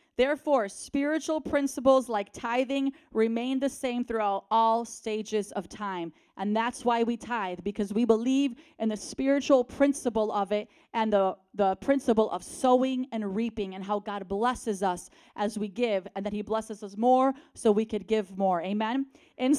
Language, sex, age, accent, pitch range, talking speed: English, female, 30-49, American, 210-260 Hz, 170 wpm